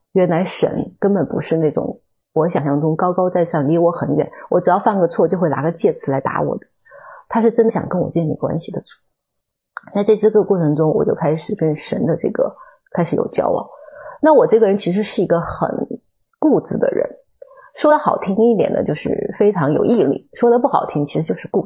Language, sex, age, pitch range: Chinese, female, 30-49, 170-265 Hz